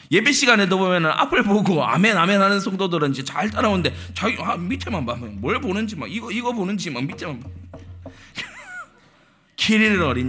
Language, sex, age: Korean, male, 40-59